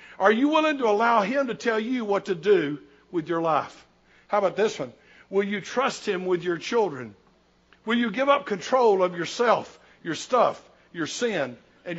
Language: English